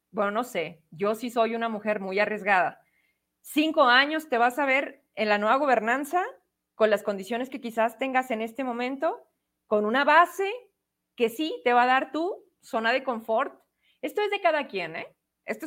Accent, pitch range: Mexican, 220-310 Hz